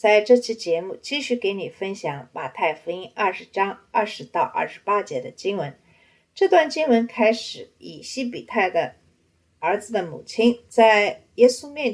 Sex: female